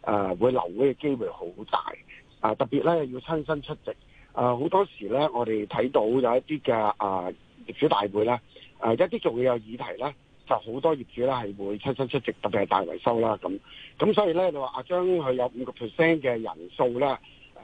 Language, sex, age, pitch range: Chinese, male, 50-69, 120-165 Hz